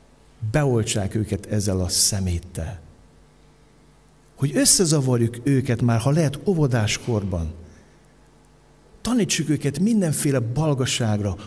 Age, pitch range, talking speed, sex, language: 50-69, 115-175 Hz, 85 wpm, male, Hungarian